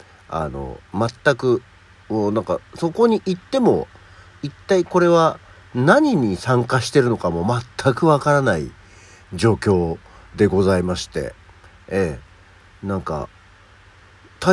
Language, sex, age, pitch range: Japanese, male, 60-79, 95-130 Hz